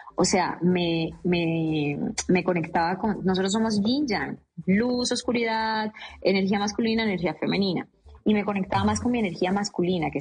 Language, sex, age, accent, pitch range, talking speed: Spanish, female, 20-39, Colombian, 170-215 Hz, 145 wpm